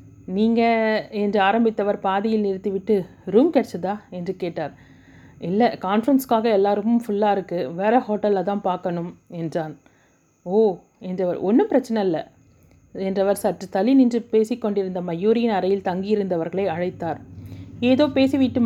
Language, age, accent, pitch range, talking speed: Tamil, 30-49, native, 180-225 Hz, 115 wpm